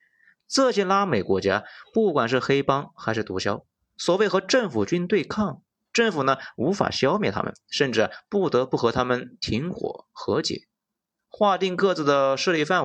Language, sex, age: Chinese, male, 30-49